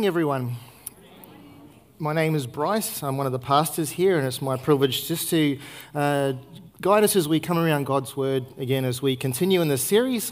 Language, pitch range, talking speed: English, 130-165 Hz, 190 wpm